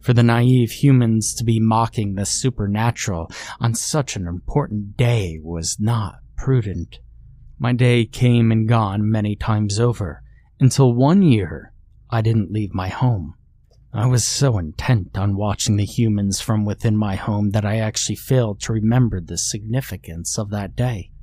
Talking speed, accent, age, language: 160 wpm, American, 30-49, English